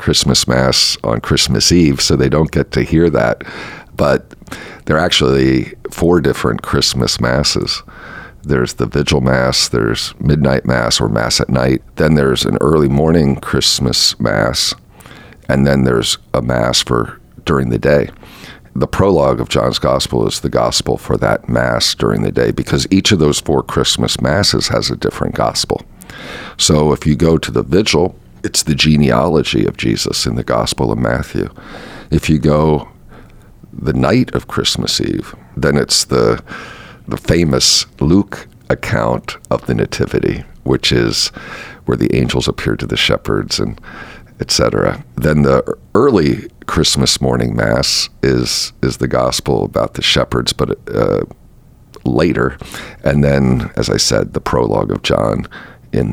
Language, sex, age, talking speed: English, male, 50-69, 155 wpm